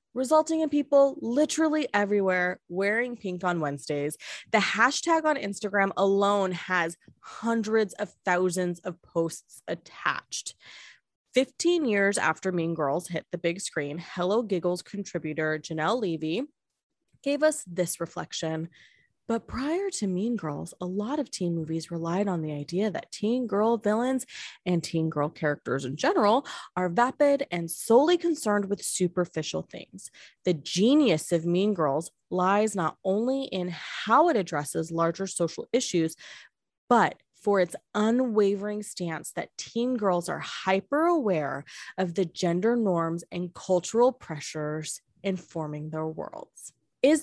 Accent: American